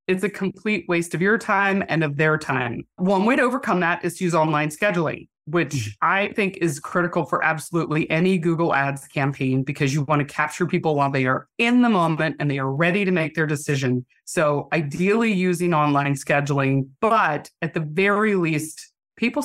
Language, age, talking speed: English, 30-49, 195 wpm